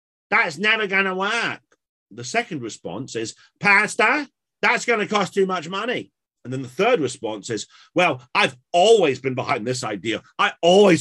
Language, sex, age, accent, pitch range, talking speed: English, male, 40-59, British, 105-145 Hz, 175 wpm